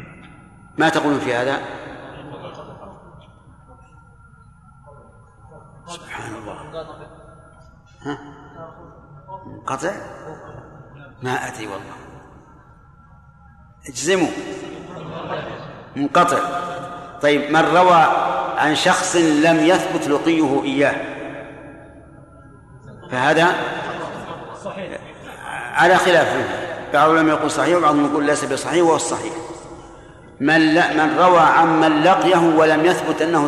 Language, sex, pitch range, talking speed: Arabic, male, 145-170 Hz, 75 wpm